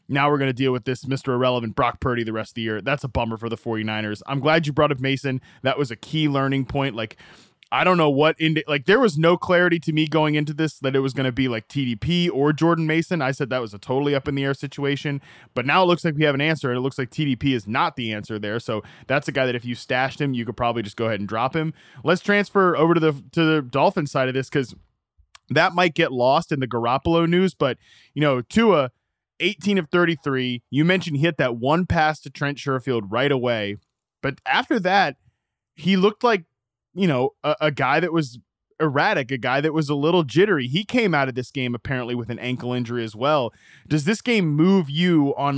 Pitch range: 125-155 Hz